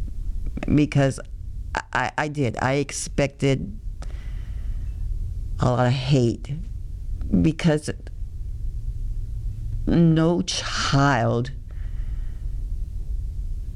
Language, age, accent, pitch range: English, 50-69, American, 95-135 Hz